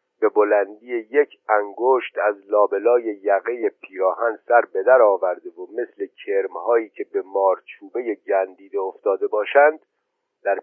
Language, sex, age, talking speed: Persian, male, 50-69, 120 wpm